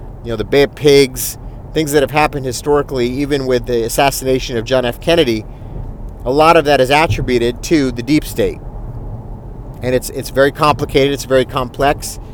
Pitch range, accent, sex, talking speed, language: 120-145 Hz, American, male, 180 wpm, English